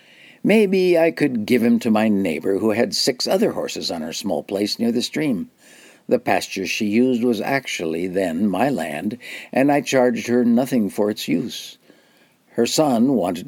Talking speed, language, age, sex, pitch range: 180 wpm, English, 60-79, male, 105-130 Hz